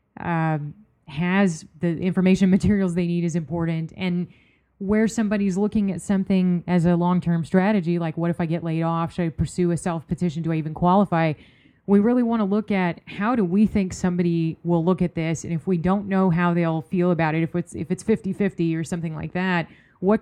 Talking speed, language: 200 wpm, English